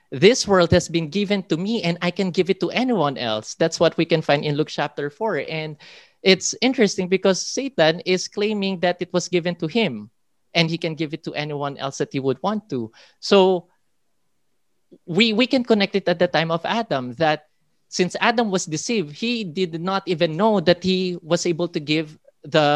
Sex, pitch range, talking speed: male, 150-185 Hz, 205 wpm